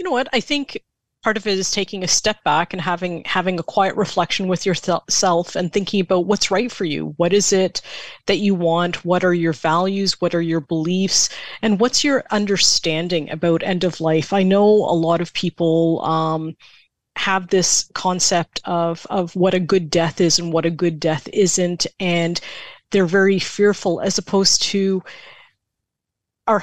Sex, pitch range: female, 170-200 Hz